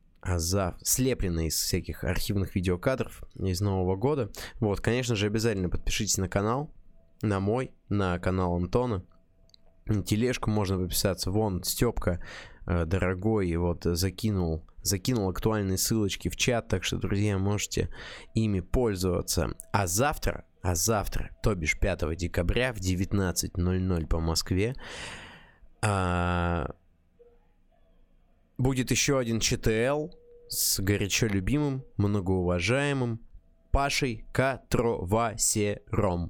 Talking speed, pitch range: 100 wpm, 90-115 Hz